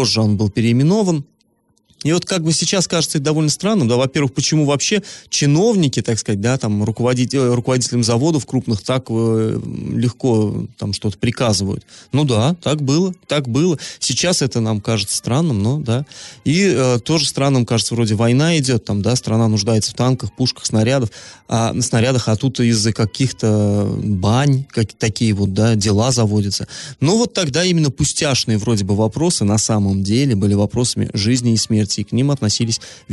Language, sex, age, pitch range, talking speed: Russian, male, 20-39, 115-145 Hz, 170 wpm